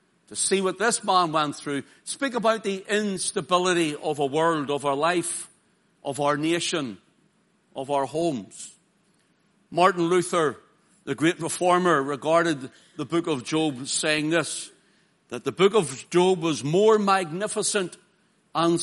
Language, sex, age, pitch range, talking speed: English, male, 60-79, 155-200 Hz, 140 wpm